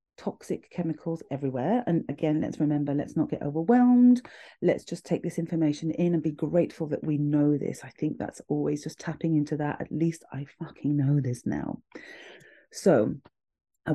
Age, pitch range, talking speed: 30-49, 145-175 Hz, 175 wpm